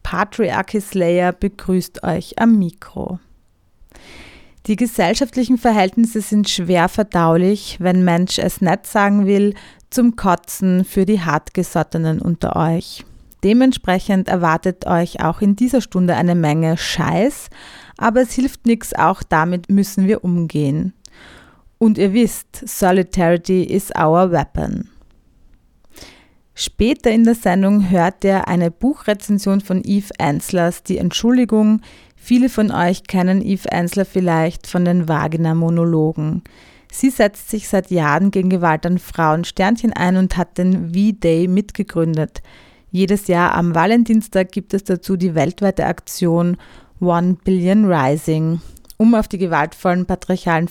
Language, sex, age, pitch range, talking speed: German, female, 30-49, 170-205 Hz, 130 wpm